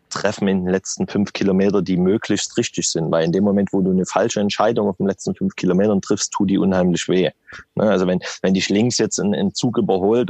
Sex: male